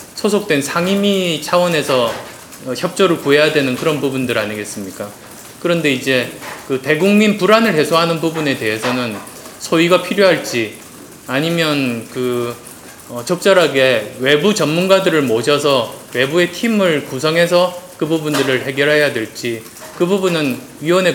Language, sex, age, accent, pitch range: Korean, male, 20-39, native, 125-170 Hz